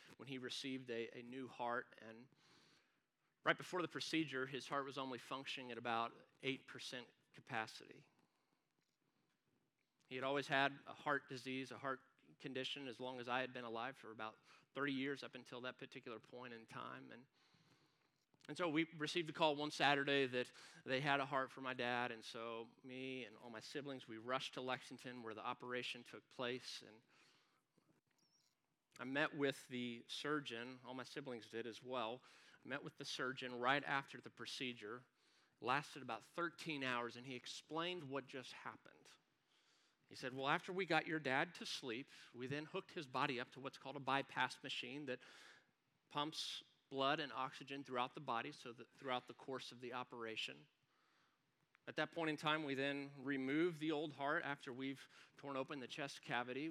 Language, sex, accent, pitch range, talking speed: English, male, American, 125-145 Hz, 180 wpm